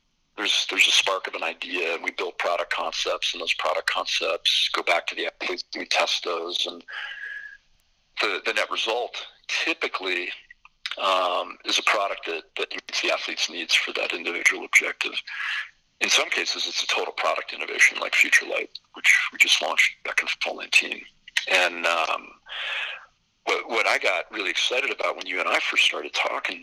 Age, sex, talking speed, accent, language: 50-69, male, 180 wpm, American, English